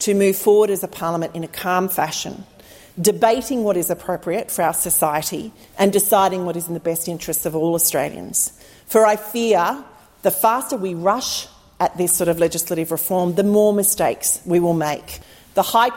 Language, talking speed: Italian, 185 wpm